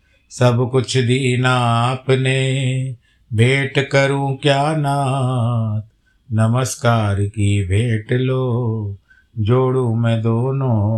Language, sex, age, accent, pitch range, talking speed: Hindi, male, 50-69, native, 110-125 Hz, 85 wpm